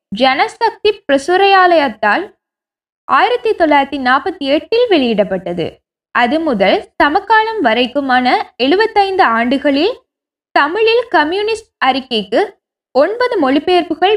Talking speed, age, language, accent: 75 wpm, 20-39, Tamil, native